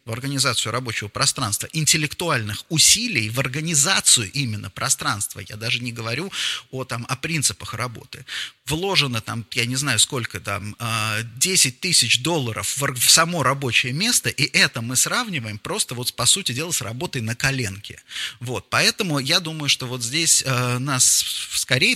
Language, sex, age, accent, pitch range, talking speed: Russian, male, 30-49, native, 120-155 Hz, 140 wpm